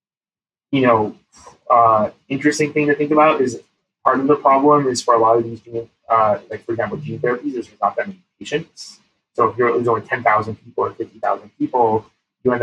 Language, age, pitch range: English, 20-39, 110-140 Hz